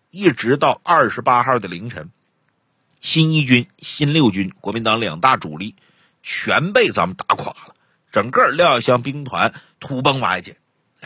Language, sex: Chinese, male